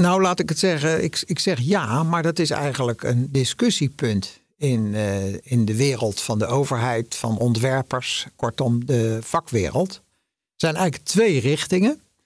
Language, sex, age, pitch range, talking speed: Dutch, male, 60-79, 130-175 Hz, 160 wpm